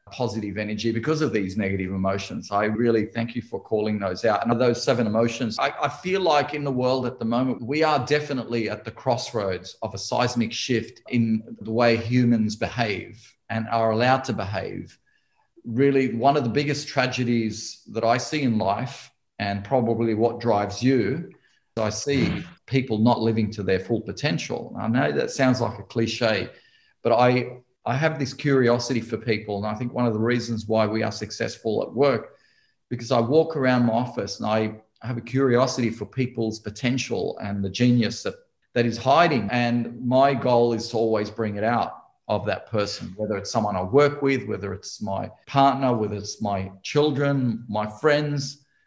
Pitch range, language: 110-130 Hz, English